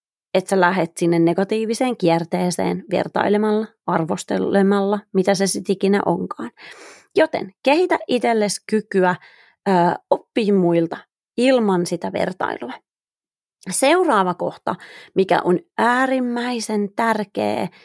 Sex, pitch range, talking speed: female, 175-225 Hz, 100 wpm